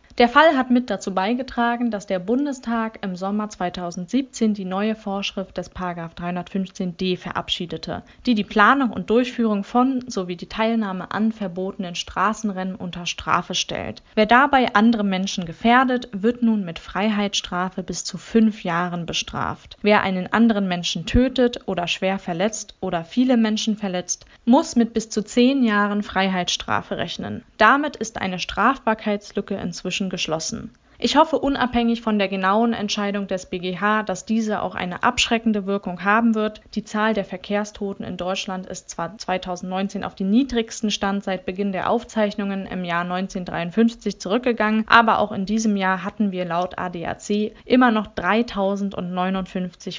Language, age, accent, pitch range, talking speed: German, 20-39, German, 190-230 Hz, 150 wpm